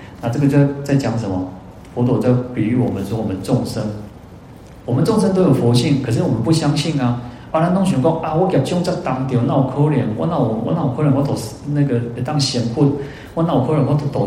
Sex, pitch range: male, 105-135 Hz